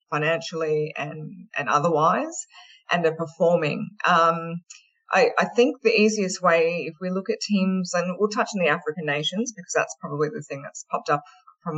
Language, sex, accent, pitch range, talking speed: English, female, Australian, 155-195 Hz, 180 wpm